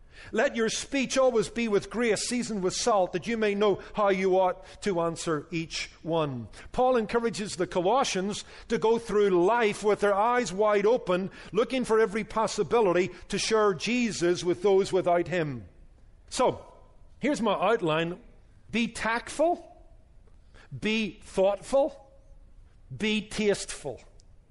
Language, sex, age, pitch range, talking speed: English, male, 50-69, 175-235 Hz, 135 wpm